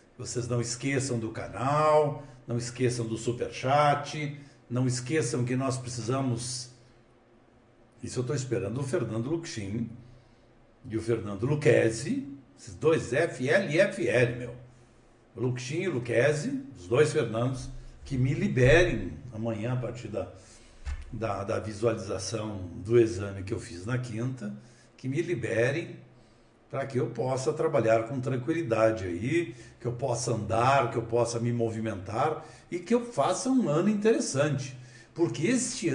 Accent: Brazilian